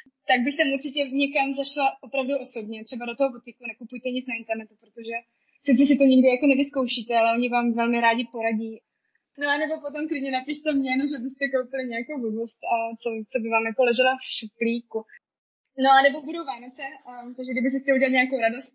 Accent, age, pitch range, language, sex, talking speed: native, 20-39, 230-270 Hz, Czech, female, 190 wpm